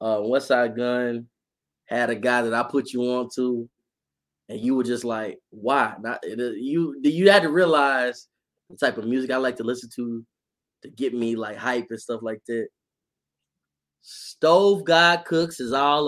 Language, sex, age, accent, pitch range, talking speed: English, male, 20-39, American, 110-135 Hz, 180 wpm